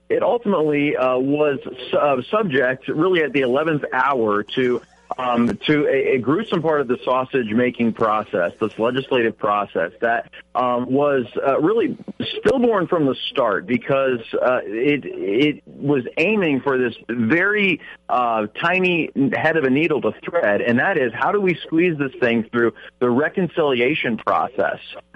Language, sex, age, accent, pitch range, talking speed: English, male, 40-59, American, 115-145 Hz, 155 wpm